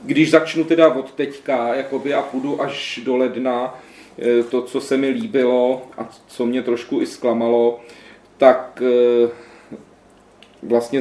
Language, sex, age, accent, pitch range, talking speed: Czech, male, 40-59, native, 120-150 Hz, 130 wpm